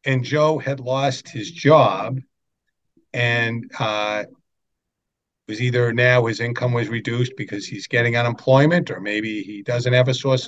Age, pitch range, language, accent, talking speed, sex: 50-69, 110-135 Hz, English, American, 150 wpm, male